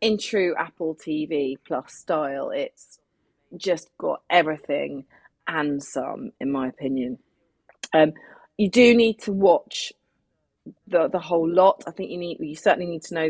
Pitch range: 145-170 Hz